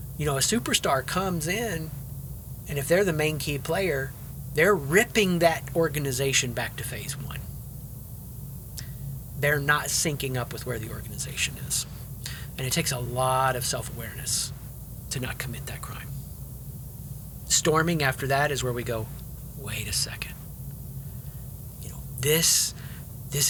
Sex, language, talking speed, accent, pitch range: male, English, 145 wpm, American, 125-145 Hz